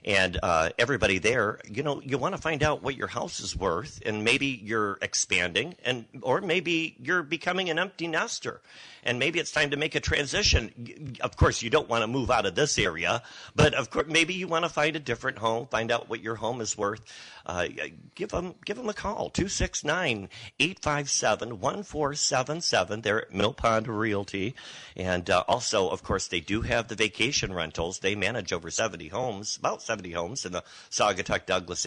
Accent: American